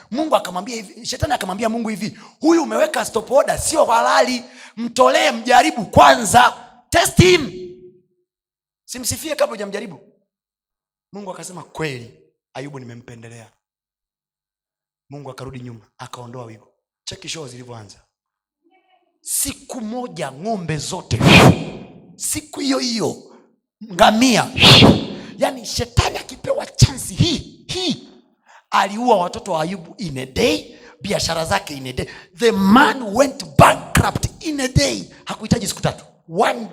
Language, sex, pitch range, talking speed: Swahili, male, 160-260 Hz, 115 wpm